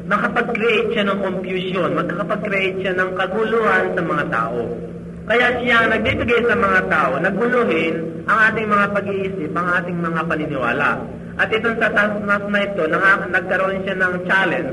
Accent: native